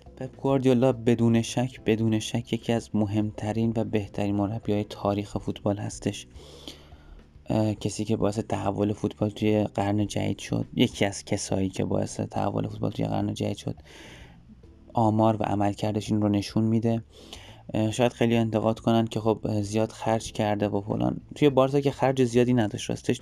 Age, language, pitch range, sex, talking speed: 20-39, Persian, 105-115 Hz, male, 150 wpm